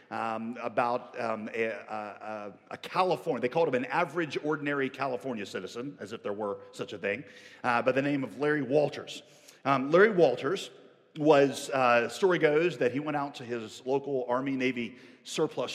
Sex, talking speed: male, 170 wpm